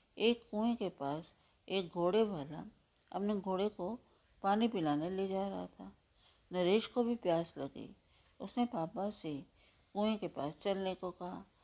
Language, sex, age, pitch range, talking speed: Hindi, female, 50-69, 160-200 Hz, 155 wpm